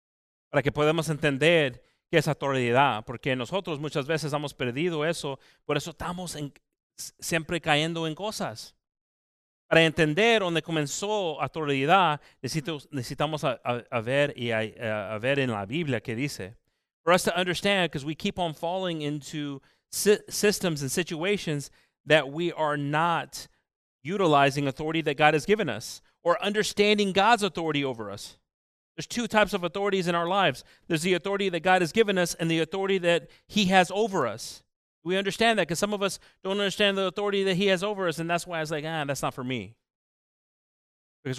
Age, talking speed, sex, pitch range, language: 30-49, 180 wpm, male, 145-185 Hz, English